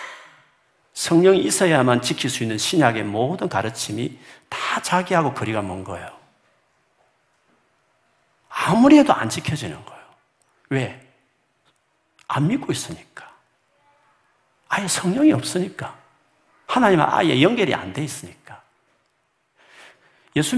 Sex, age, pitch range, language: male, 50-69, 105-160 Hz, Korean